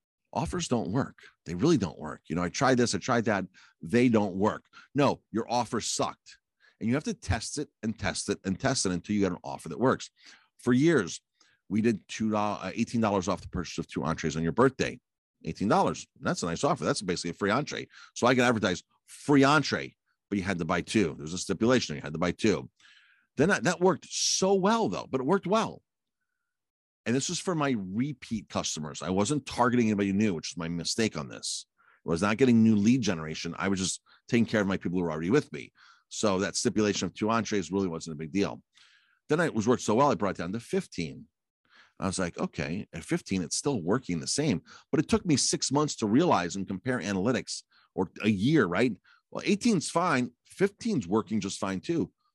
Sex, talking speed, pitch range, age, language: male, 220 wpm, 95-135 Hz, 50-69, English